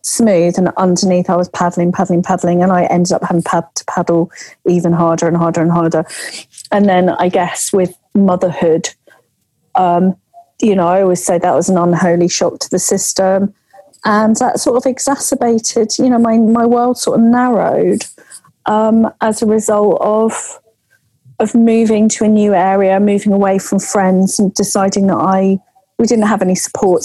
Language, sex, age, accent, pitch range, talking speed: English, female, 40-59, British, 180-235 Hz, 175 wpm